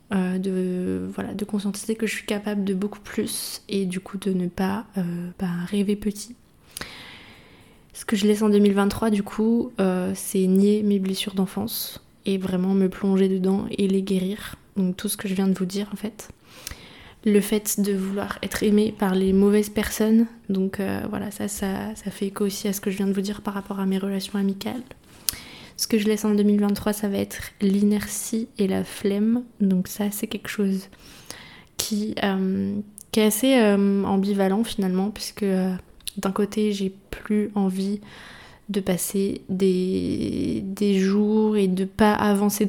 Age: 20-39